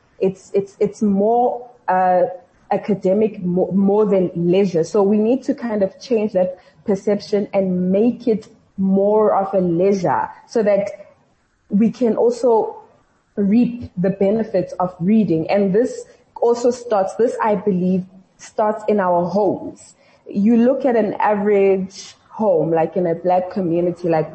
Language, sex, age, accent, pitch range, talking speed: English, female, 20-39, South African, 185-235 Hz, 145 wpm